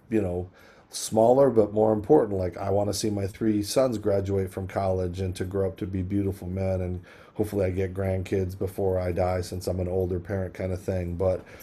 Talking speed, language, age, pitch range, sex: 215 wpm, English, 40-59, 95-115 Hz, male